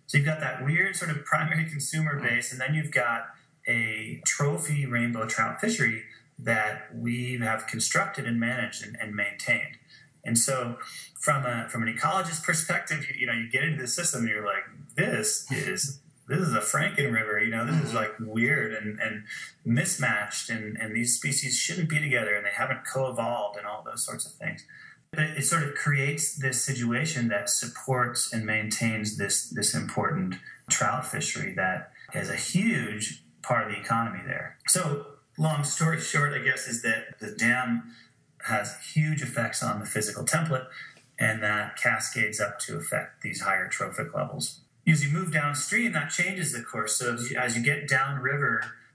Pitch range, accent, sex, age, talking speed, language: 115-150 Hz, American, male, 30-49, 180 wpm, English